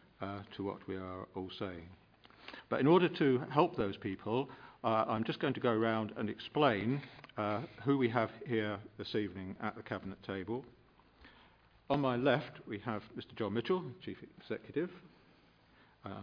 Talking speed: 165 wpm